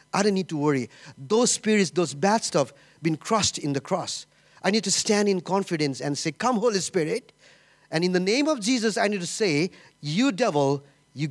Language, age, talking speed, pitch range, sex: English, 50-69, 205 wpm, 155-220 Hz, male